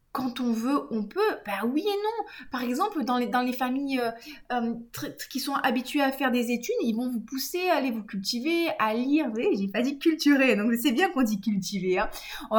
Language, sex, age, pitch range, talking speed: French, female, 20-39, 215-270 Hz, 240 wpm